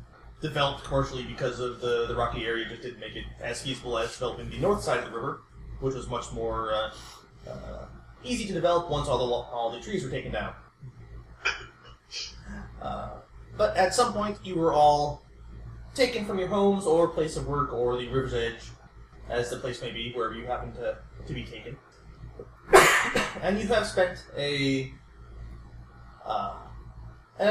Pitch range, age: 105-145 Hz, 20-39